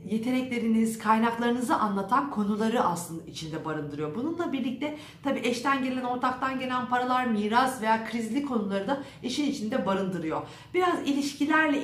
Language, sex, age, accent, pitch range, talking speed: Turkish, female, 50-69, native, 175-235 Hz, 125 wpm